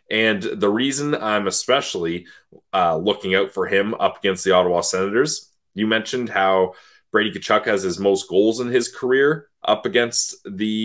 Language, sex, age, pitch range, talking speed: English, male, 30-49, 90-145 Hz, 165 wpm